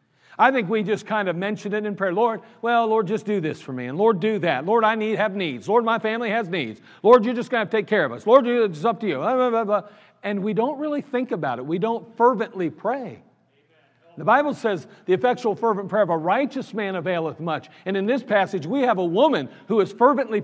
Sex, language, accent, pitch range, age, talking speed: male, English, American, 170-225 Hz, 50-69, 250 wpm